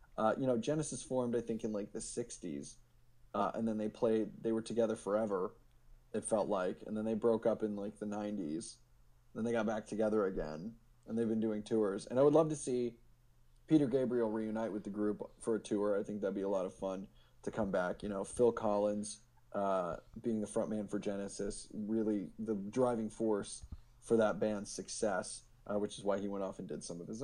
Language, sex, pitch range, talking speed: English, male, 105-125 Hz, 220 wpm